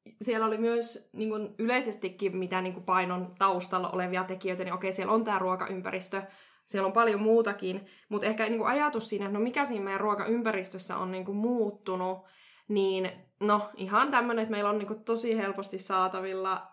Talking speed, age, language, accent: 165 wpm, 10-29, Finnish, native